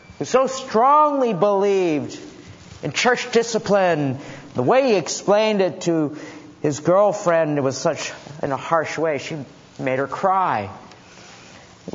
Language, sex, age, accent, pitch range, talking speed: English, male, 50-69, American, 145-190 Hz, 135 wpm